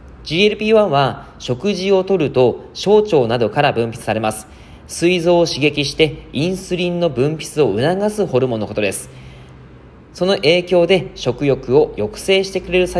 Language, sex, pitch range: Japanese, male, 120-180 Hz